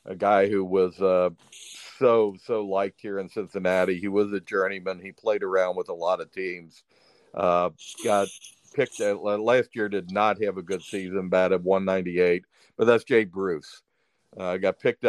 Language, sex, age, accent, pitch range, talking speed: English, male, 50-69, American, 90-105 Hz, 185 wpm